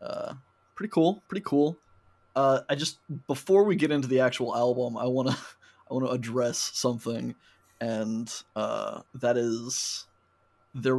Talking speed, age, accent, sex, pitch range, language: 155 wpm, 20-39, American, male, 115-135 Hz, English